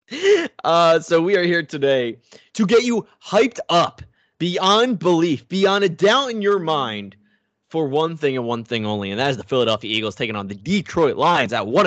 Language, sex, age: English, male, 20-39